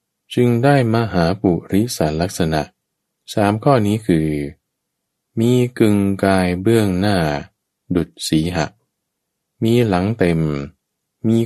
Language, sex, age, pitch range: Thai, male, 20-39, 80-115 Hz